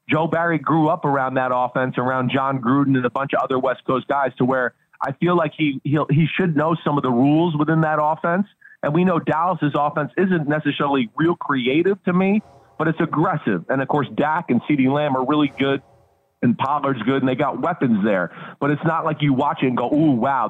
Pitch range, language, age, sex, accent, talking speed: 140-180 Hz, English, 40-59, male, American, 230 wpm